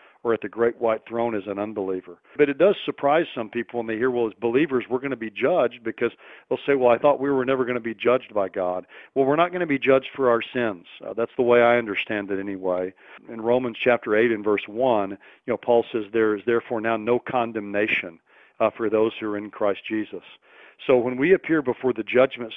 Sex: male